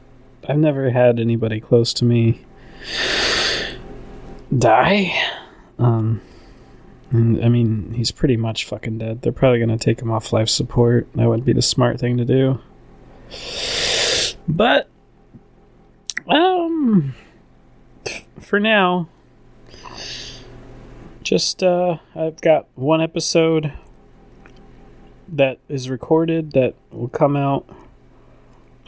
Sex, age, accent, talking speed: male, 20-39, American, 110 wpm